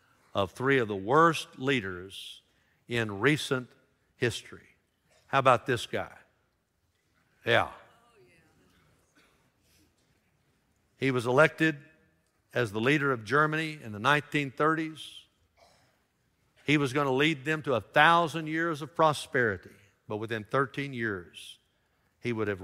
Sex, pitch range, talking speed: male, 110-150 Hz, 115 wpm